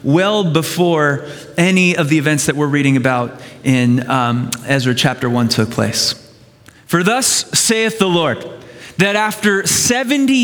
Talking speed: 145 wpm